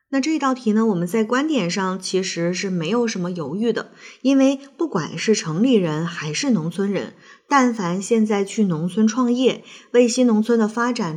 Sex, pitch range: female, 180-250 Hz